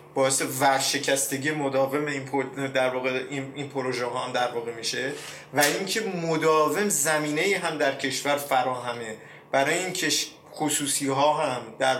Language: Persian